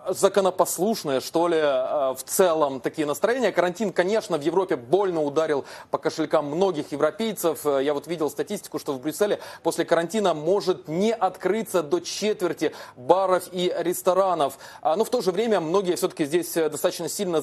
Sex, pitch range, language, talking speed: male, 155-190 Hz, Russian, 150 wpm